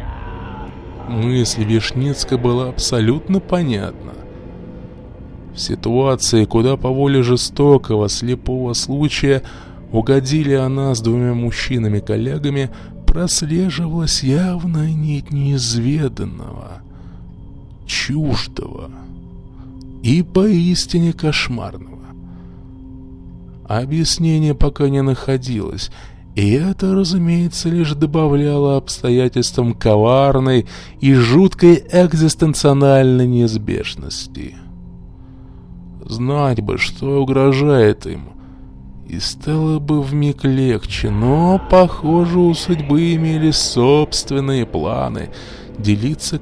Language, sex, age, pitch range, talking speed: Russian, male, 20-39, 110-150 Hz, 75 wpm